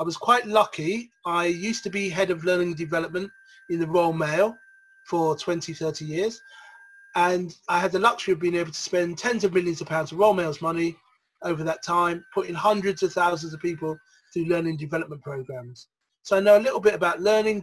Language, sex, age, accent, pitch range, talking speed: English, male, 30-49, British, 160-215 Hz, 200 wpm